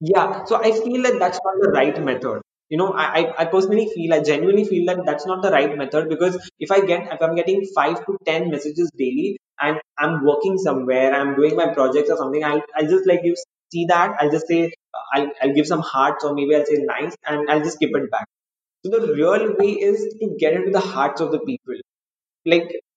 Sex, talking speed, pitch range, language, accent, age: male, 235 wpm, 150-195 Hz, English, Indian, 20-39